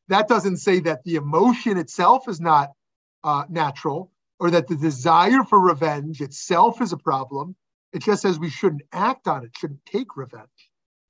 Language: English